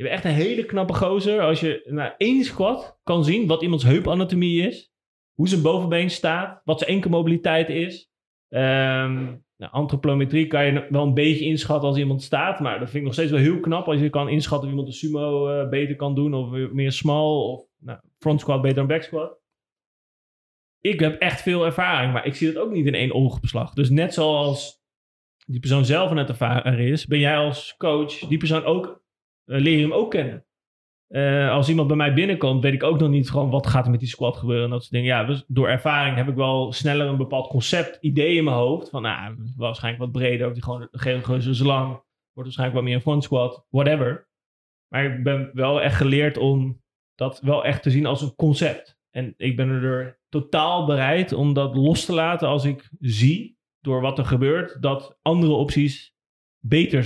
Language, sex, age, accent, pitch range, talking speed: Dutch, male, 30-49, Dutch, 130-155 Hz, 210 wpm